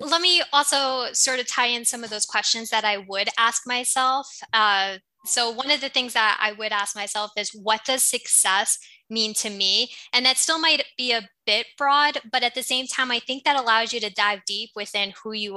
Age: 10-29